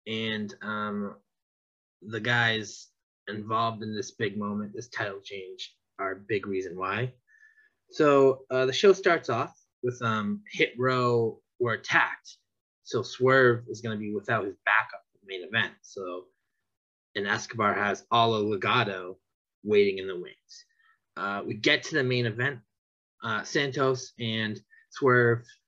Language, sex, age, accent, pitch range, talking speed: English, male, 20-39, American, 110-140 Hz, 145 wpm